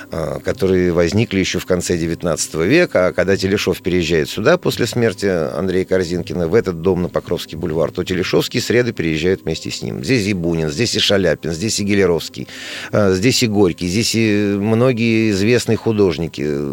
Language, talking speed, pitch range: Russian, 165 wpm, 90-115 Hz